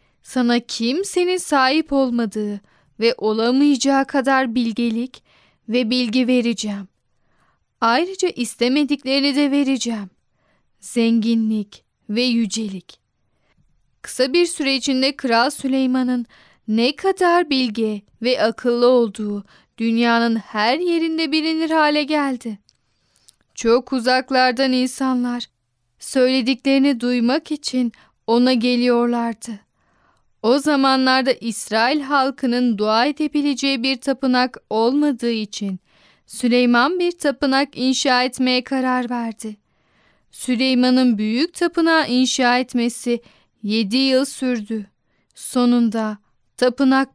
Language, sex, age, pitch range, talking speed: Turkish, female, 10-29, 230-275 Hz, 90 wpm